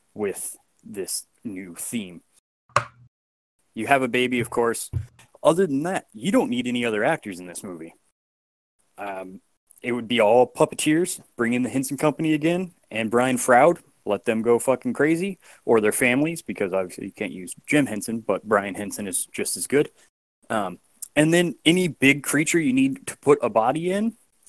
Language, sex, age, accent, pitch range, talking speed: English, male, 20-39, American, 110-155 Hz, 175 wpm